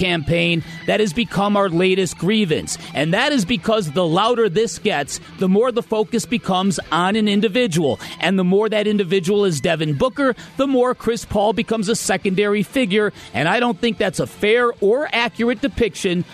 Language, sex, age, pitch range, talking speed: English, male, 40-59, 185-235 Hz, 180 wpm